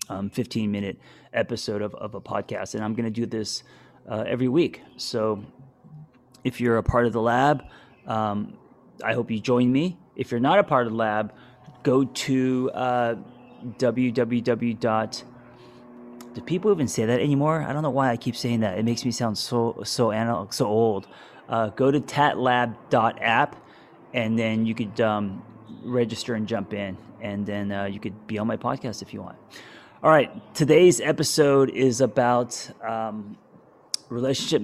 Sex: male